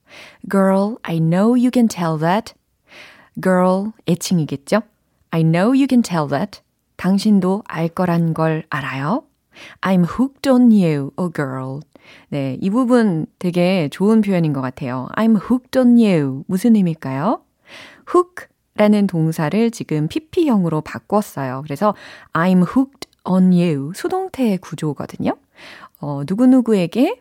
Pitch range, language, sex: 155-225 Hz, Korean, female